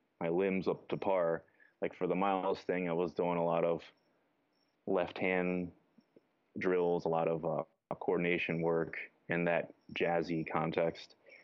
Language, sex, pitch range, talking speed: English, male, 85-90 Hz, 150 wpm